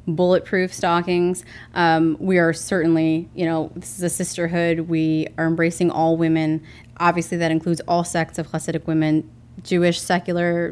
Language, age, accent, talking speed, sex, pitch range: English, 20-39, American, 150 wpm, female, 160-180 Hz